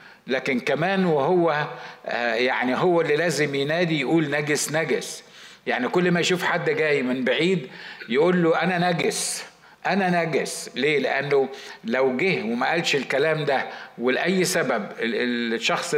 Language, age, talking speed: Arabic, 50-69, 135 wpm